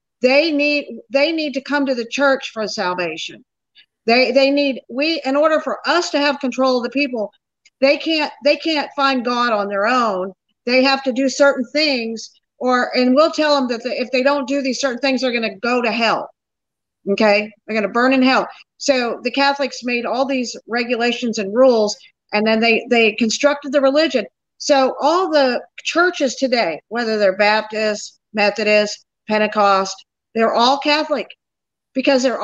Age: 50-69